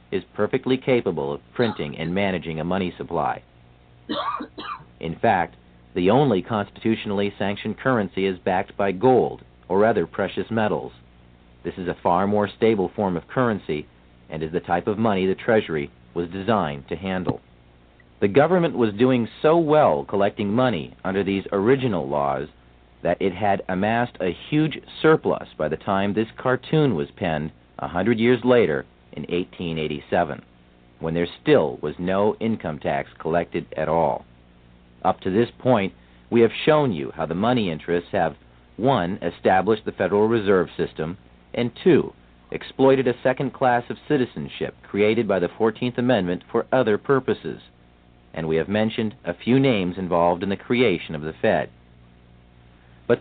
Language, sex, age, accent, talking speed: English, male, 50-69, American, 155 wpm